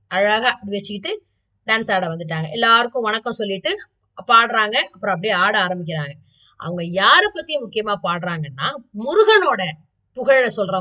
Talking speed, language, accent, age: 120 wpm, Tamil, native, 20-39